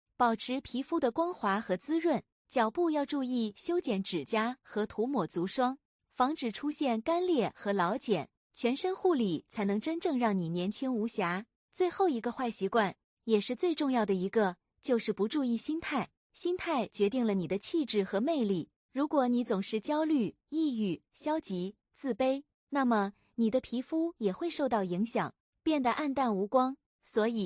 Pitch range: 210-295 Hz